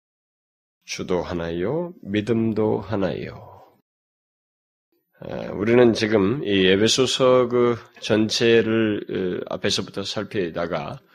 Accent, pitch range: native, 90-120 Hz